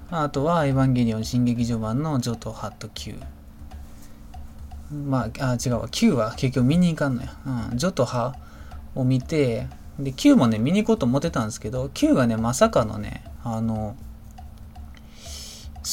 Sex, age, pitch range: male, 20-39, 105-140 Hz